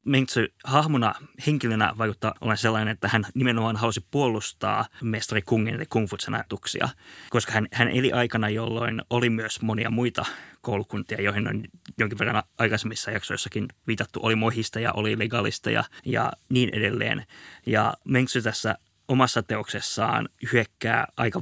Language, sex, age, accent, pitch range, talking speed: Finnish, male, 20-39, native, 105-120 Hz, 130 wpm